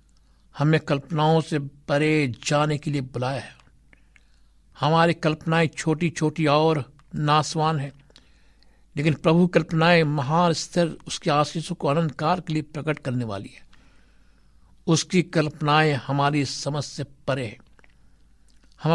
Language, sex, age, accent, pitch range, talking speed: Hindi, male, 60-79, native, 130-160 Hz, 120 wpm